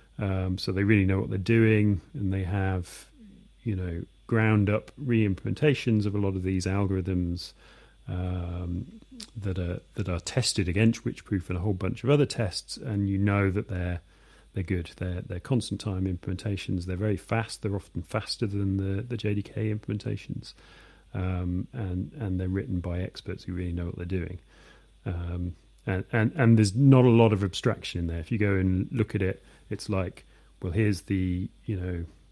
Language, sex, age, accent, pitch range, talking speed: English, male, 40-59, British, 90-110 Hz, 185 wpm